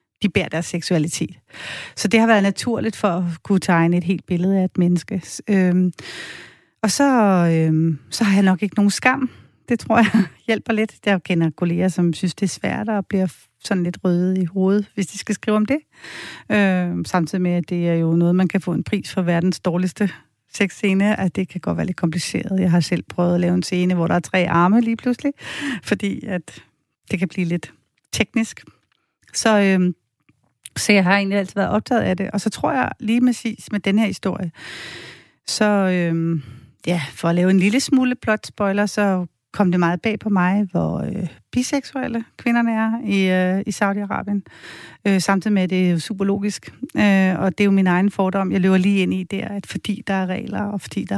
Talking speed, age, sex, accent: 205 wpm, 40-59, female, native